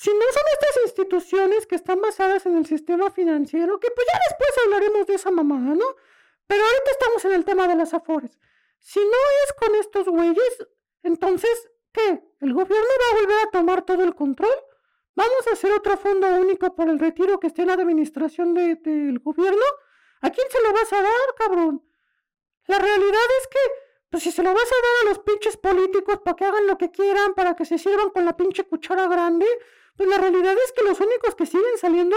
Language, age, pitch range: Spanish, 40-59, 355-435 Hz